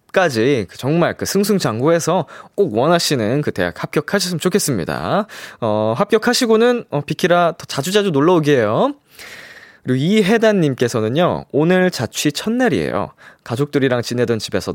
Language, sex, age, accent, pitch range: Korean, male, 20-39, native, 110-165 Hz